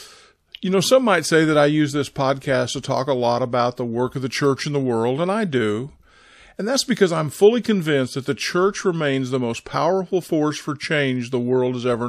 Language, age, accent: English, 50-69, American